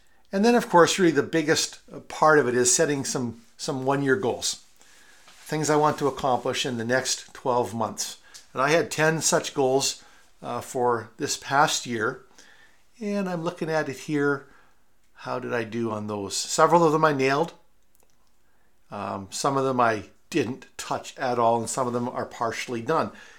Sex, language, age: male, English, 50-69